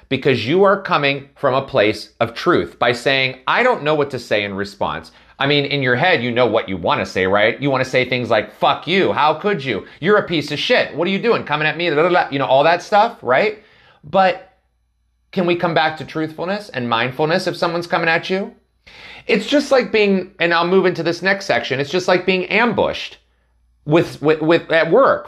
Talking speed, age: 230 wpm, 30-49